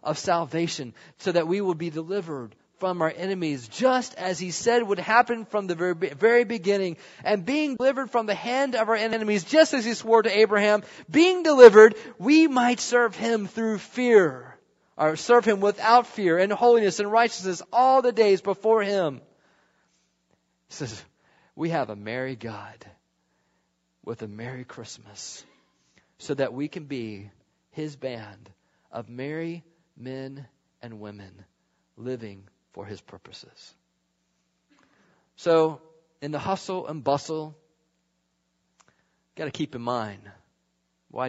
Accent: American